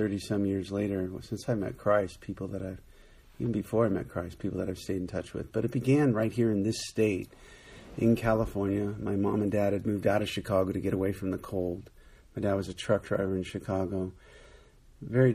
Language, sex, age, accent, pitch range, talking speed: English, male, 50-69, American, 95-110 Hz, 225 wpm